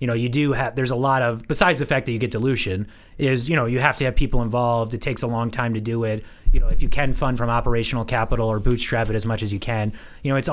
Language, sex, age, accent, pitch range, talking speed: English, male, 30-49, American, 110-130 Hz, 300 wpm